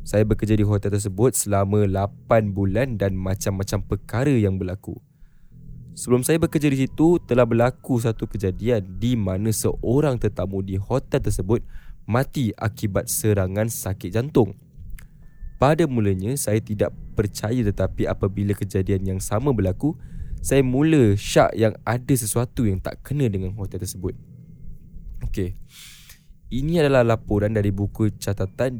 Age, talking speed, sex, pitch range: 10-29, 135 wpm, male, 100-125 Hz